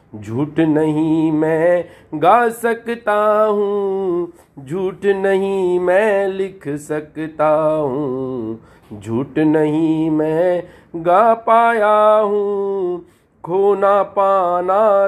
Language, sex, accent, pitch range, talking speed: Hindi, male, native, 155-200 Hz, 80 wpm